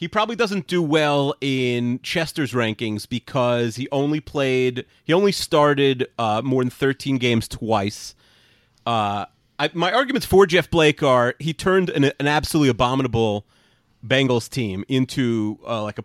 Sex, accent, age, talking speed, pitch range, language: male, American, 30-49, 155 wpm, 110-145 Hz, English